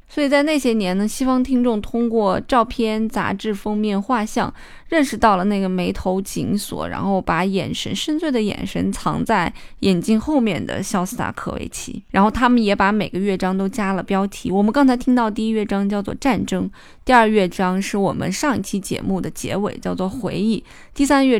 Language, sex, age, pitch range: Chinese, female, 20-39, 195-240 Hz